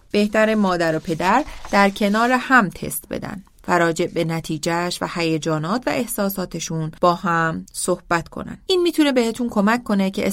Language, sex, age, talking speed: Persian, female, 30-49, 145 wpm